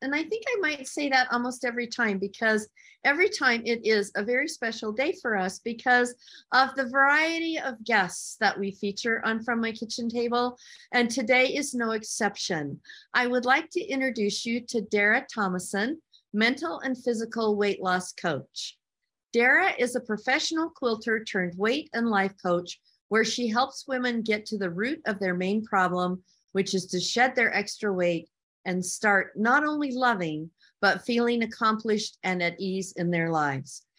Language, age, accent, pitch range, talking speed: English, 50-69, American, 190-245 Hz, 175 wpm